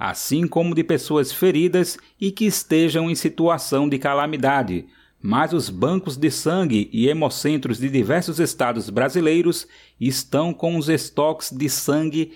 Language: Portuguese